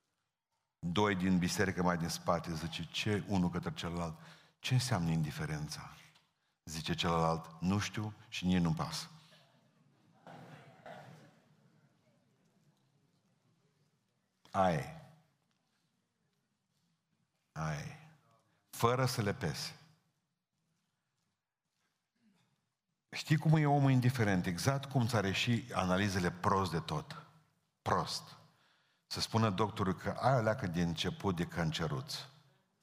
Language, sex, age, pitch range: Romanian, male, 50-69, 95-155 Hz